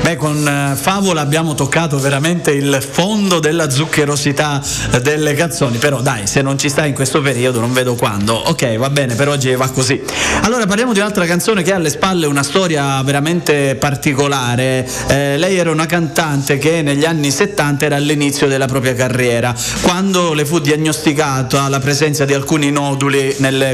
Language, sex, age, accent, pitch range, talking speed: Italian, male, 30-49, native, 135-175 Hz, 175 wpm